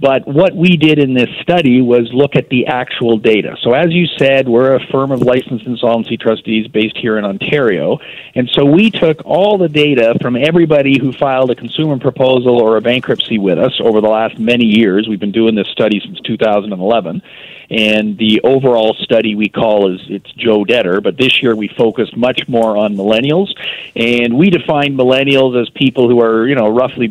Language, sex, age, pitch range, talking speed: English, male, 40-59, 110-140 Hz, 195 wpm